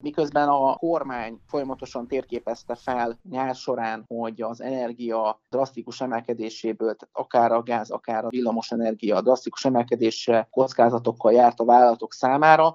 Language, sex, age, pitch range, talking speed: Hungarian, male, 30-49, 115-130 Hz, 125 wpm